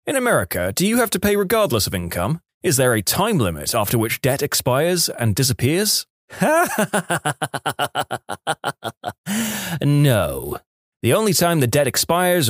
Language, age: English, 20-39